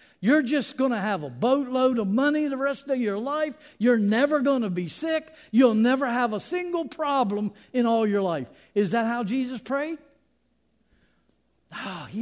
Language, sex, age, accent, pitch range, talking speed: English, male, 50-69, American, 205-275 Hz, 175 wpm